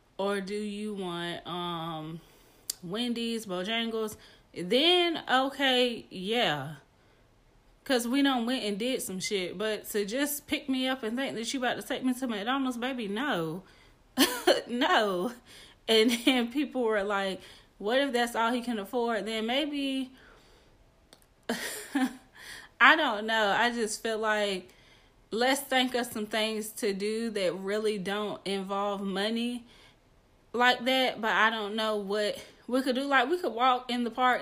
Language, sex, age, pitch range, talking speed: English, female, 20-39, 210-255 Hz, 150 wpm